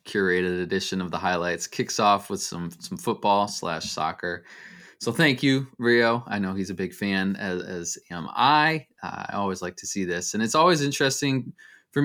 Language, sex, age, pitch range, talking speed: English, male, 20-39, 95-135 Hz, 195 wpm